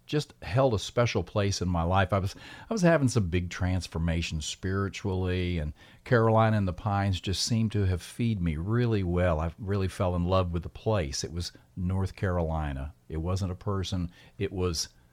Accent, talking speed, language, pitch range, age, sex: American, 190 wpm, English, 90-115 Hz, 50-69, male